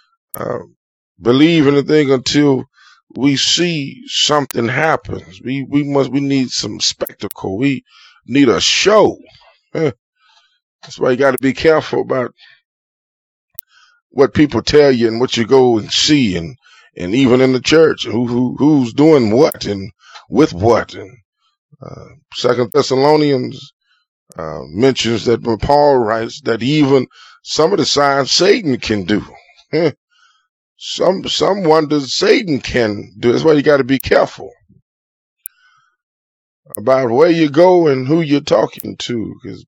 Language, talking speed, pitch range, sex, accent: English, 145 wpm, 125-155 Hz, male, American